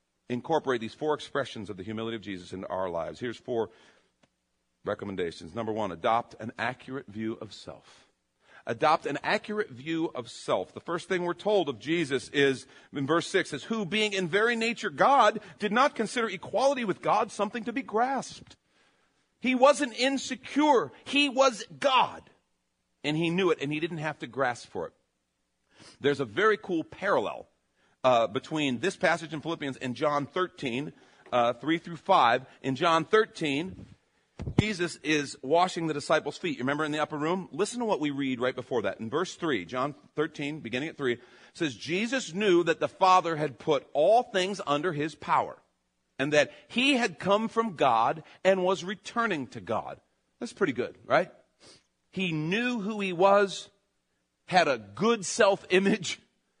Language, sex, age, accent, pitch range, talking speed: English, male, 50-69, American, 130-205 Hz, 170 wpm